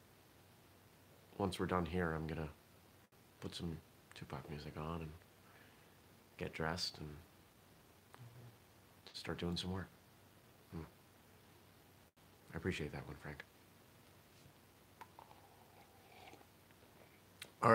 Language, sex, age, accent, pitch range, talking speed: English, male, 40-59, American, 85-115 Hz, 90 wpm